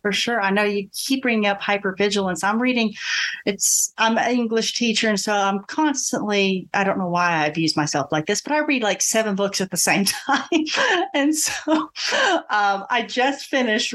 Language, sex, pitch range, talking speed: English, female, 155-220 Hz, 195 wpm